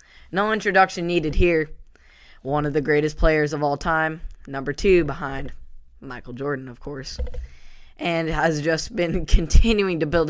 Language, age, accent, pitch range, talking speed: English, 10-29, American, 135-165 Hz, 150 wpm